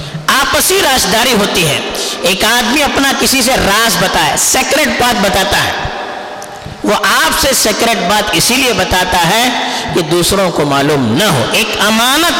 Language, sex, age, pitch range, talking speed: Urdu, female, 50-69, 210-285 Hz, 125 wpm